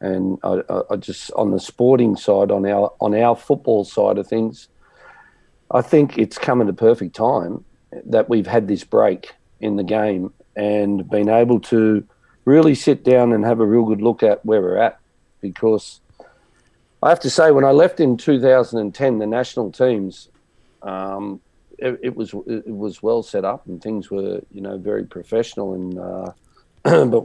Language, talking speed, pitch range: English, 185 wpm, 100-120 Hz